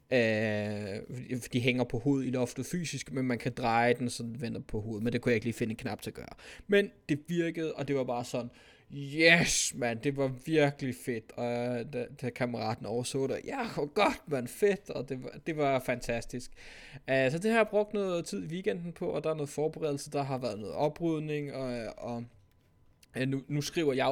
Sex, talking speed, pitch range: male, 220 wpm, 120-145 Hz